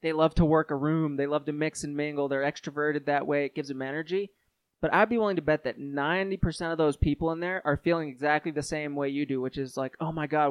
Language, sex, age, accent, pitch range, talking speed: English, male, 20-39, American, 140-160 Hz, 270 wpm